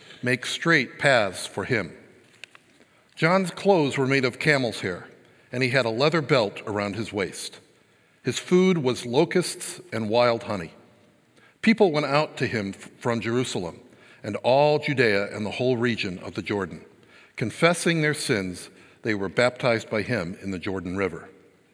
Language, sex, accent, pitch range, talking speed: English, male, American, 110-155 Hz, 155 wpm